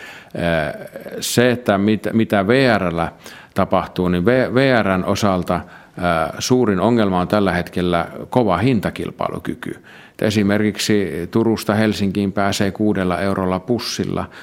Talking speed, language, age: 90 wpm, Finnish, 50-69